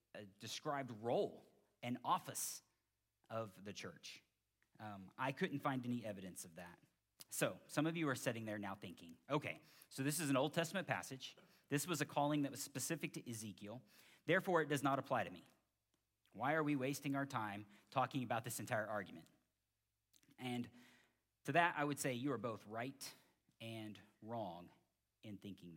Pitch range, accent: 110-140 Hz, American